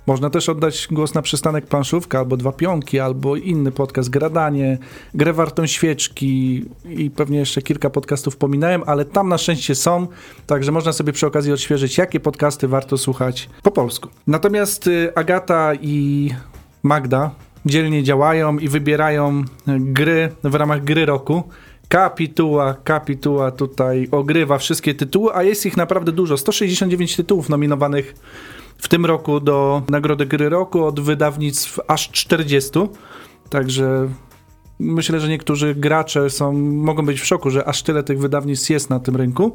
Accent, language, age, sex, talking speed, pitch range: native, Polish, 40-59, male, 145 wpm, 140-160 Hz